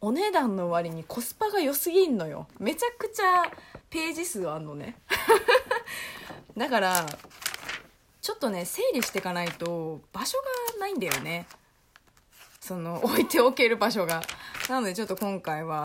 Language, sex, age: Japanese, female, 20-39